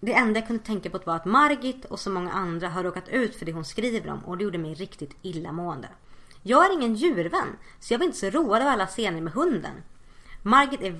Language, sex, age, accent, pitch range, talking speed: Swedish, female, 30-49, native, 175-250 Hz, 240 wpm